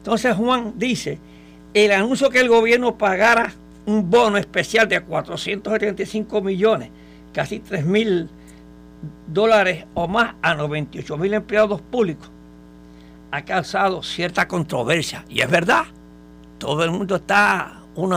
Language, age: Spanish, 60-79